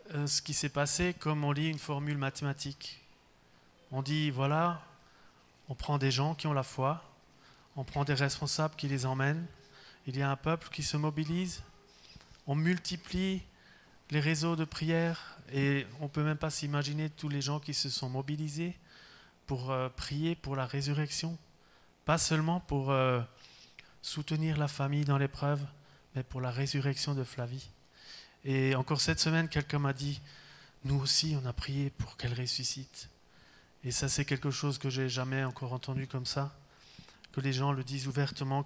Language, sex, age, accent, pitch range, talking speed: French, male, 30-49, French, 130-150 Hz, 175 wpm